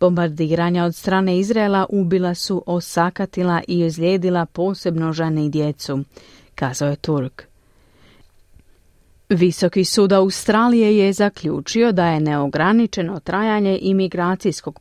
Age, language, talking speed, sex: 40-59, Croatian, 105 wpm, female